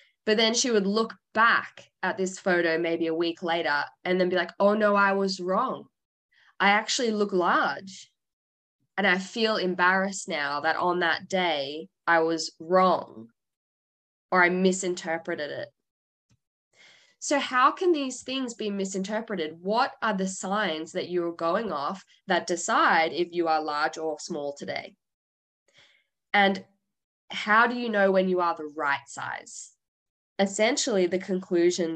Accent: Australian